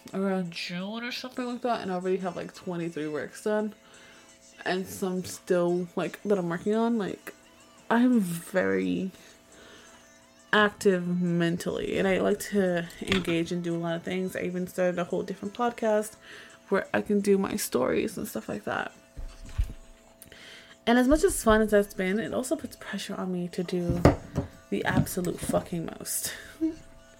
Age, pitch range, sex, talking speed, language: 20-39, 180-230 Hz, female, 165 wpm, English